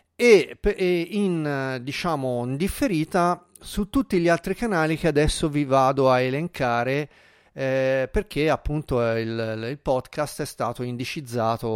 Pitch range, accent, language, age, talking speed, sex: 120-160 Hz, native, Italian, 40-59, 130 wpm, male